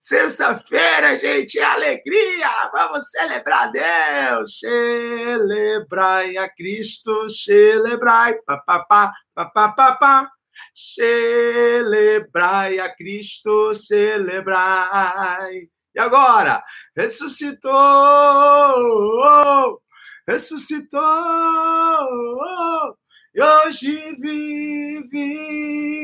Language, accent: Portuguese, Brazilian